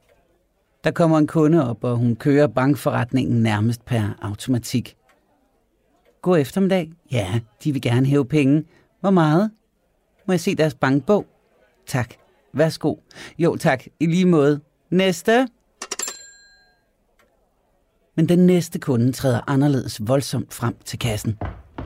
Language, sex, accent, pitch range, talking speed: Danish, male, native, 120-160 Hz, 125 wpm